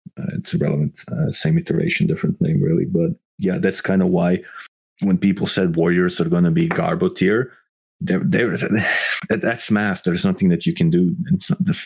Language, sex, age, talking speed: English, male, 30-49, 175 wpm